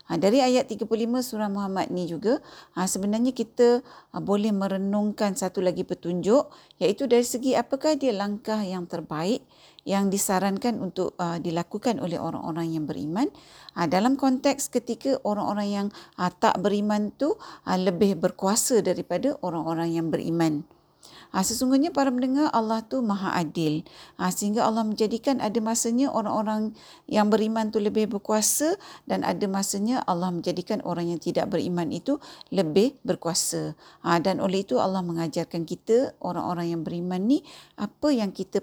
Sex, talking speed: female, 135 wpm